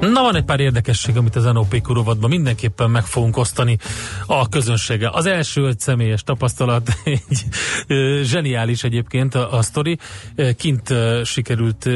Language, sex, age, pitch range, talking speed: Hungarian, male, 30-49, 110-135 Hz, 150 wpm